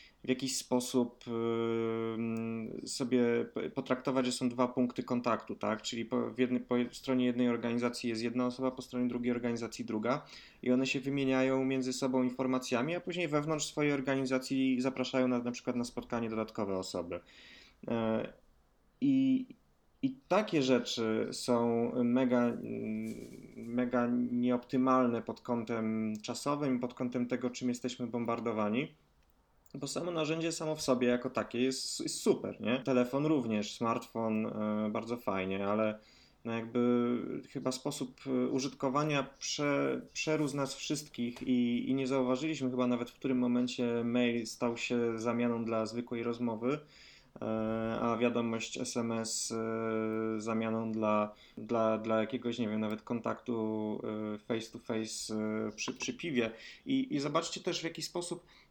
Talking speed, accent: 130 wpm, native